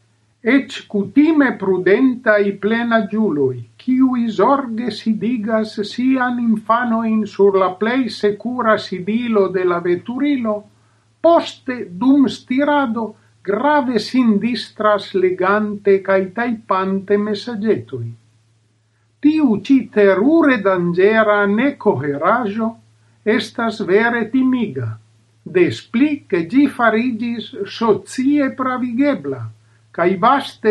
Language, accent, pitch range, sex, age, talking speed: Spanish, Italian, 190-255 Hz, male, 50-69, 85 wpm